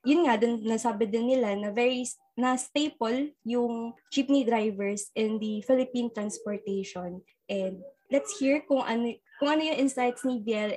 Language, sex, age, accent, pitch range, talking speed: Filipino, female, 20-39, native, 215-270 Hz, 155 wpm